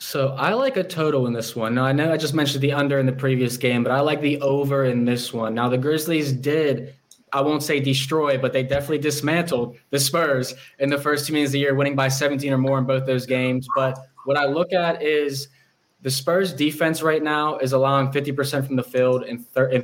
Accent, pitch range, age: American, 125-145 Hz, 10-29